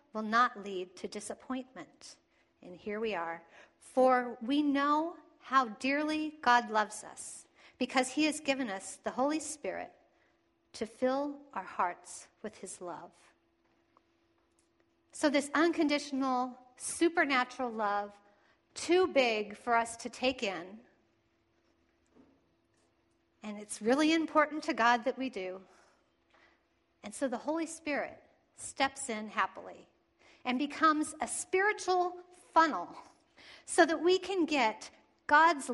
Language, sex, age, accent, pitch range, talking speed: English, female, 50-69, American, 215-305 Hz, 120 wpm